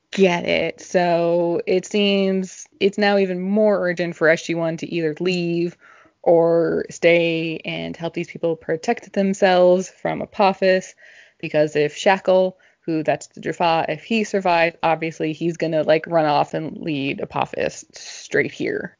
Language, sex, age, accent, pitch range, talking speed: English, female, 20-39, American, 165-195 Hz, 145 wpm